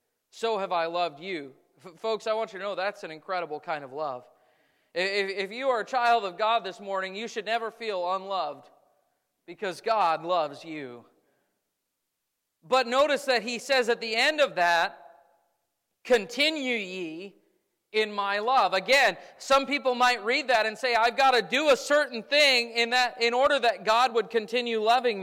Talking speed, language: 175 wpm, English